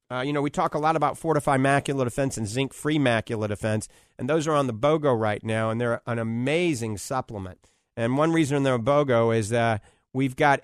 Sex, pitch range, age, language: male, 115-150 Hz, 50-69, English